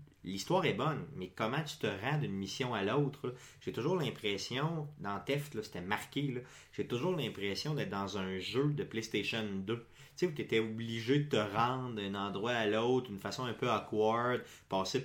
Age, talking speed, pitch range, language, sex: 30-49, 195 wpm, 100-135 Hz, French, male